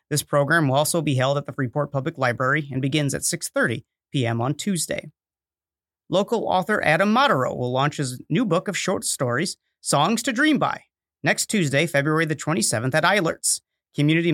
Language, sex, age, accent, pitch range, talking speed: English, male, 40-59, American, 140-190 Hz, 175 wpm